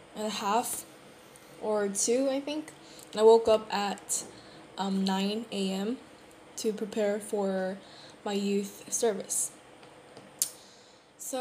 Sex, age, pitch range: female, 10-29, 200-225 Hz